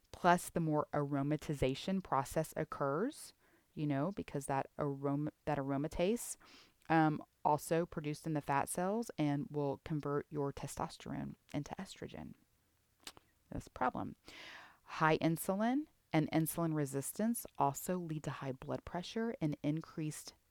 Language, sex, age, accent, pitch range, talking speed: English, female, 30-49, American, 140-185 Hz, 125 wpm